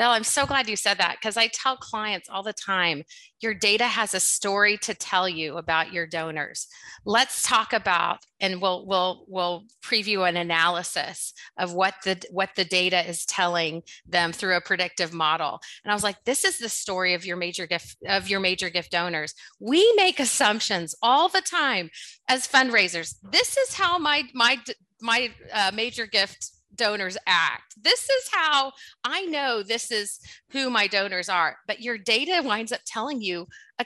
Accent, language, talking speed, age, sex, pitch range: American, English, 185 wpm, 30-49, female, 185-255 Hz